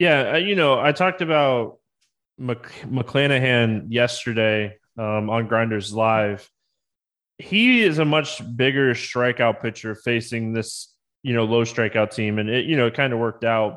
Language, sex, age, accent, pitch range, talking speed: English, male, 20-39, American, 115-145 Hz, 155 wpm